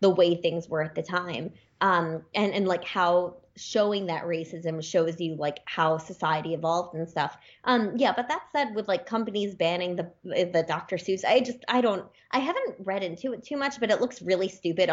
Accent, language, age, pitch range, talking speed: American, English, 20-39, 175-240 Hz, 210 wpm